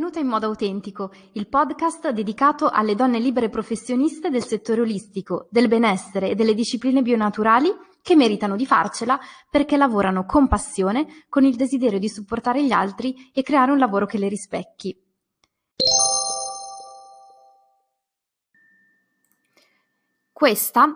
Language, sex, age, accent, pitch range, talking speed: Italian, female, 20-39, native, 200-280 Hz, 125 wpm